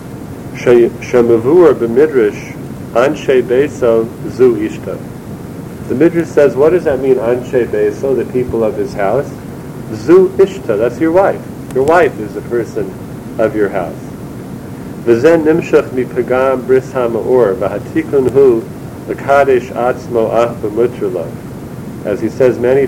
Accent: American